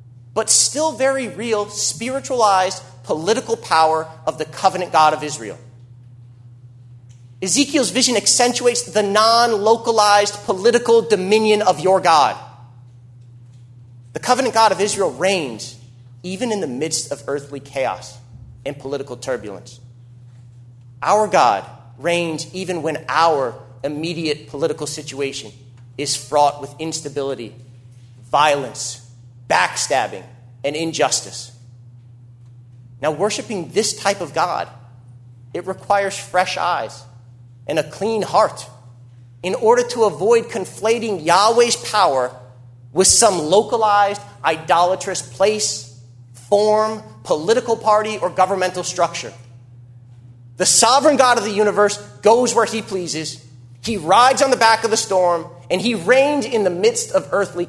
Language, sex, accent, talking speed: English, male, American, 120 wpm